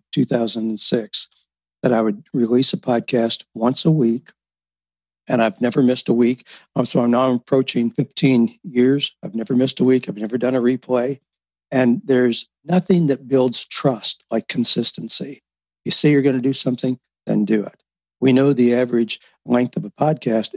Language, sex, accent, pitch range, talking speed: English, male, American, 115-135 Hz, 170 wpm